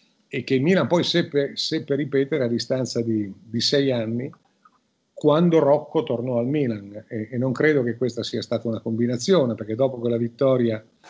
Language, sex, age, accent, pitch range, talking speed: Italian, male, 50-69, native, 120-150 Hz, 175 wpm